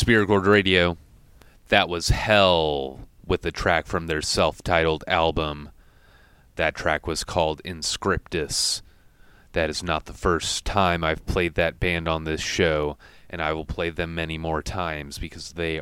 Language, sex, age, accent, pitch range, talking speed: English, male, 30-49, American, 80-95 Hz, 150 wpm